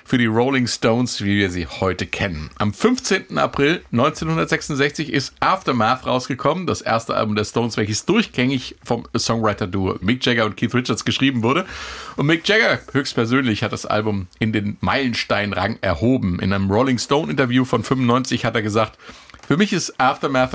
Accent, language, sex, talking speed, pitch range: German, German, male, 165 wpm, 105-130 Hz